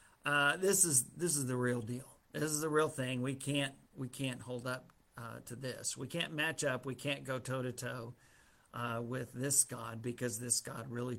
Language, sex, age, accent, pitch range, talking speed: English, male, 50-69, American, 125-150 Hz, 200 wpm